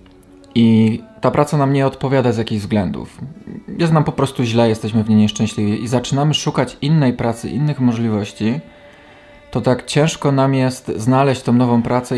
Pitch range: 110-130 Hz